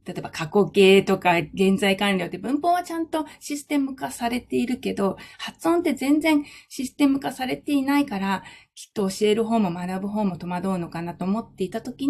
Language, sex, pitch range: Japanese, female, 180-260 Hz